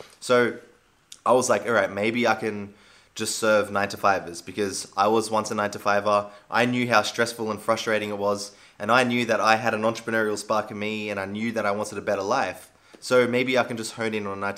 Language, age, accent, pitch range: English, 20-39, Australian, 100-120 Hz